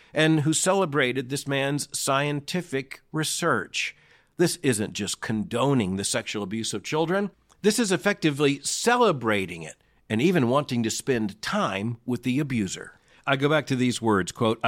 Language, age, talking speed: English, 50-69, 150 wpm